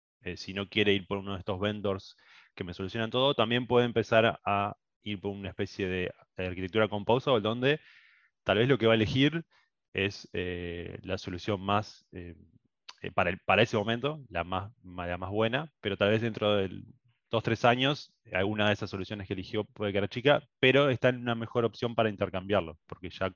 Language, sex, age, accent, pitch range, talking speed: Spanish, male, 20-39, Argentinian, 95-115 Hz, 200 wpm